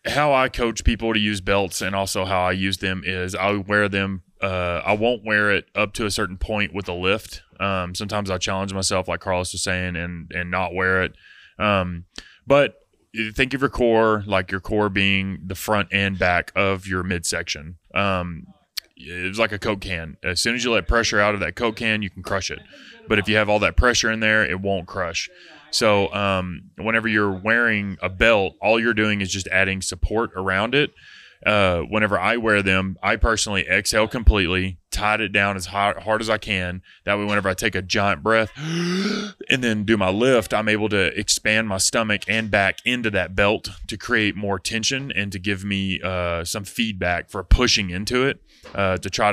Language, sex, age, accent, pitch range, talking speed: English, male, 20-39, American, 95-110 Hz, 210 wpm